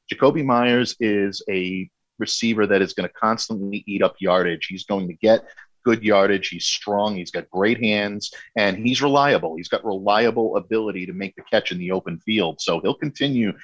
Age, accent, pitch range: 40-59, American, 95-110 Hz